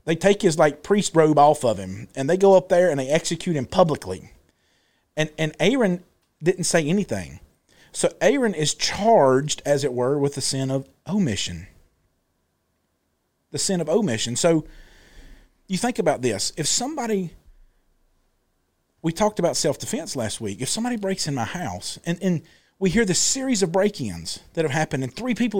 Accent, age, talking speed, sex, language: American, 40-59, 170 wpm, male, English